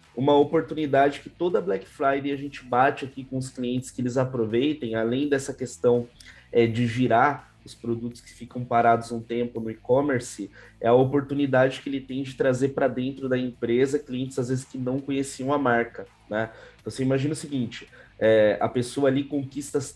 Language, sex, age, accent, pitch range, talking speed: Portuguese, male, 20-39, Brazilian, 120-140 Hz, 180 wpm